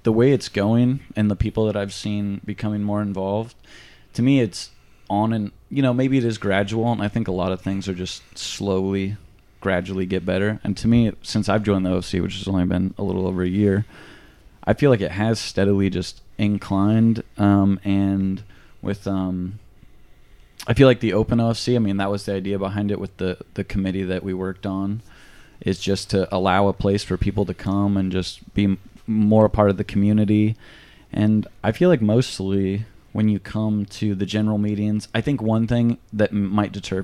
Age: 20-39